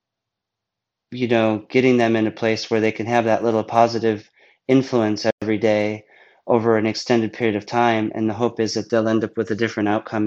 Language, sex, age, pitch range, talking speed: English, male, 30-49, 105-120 Hz, 205 wpm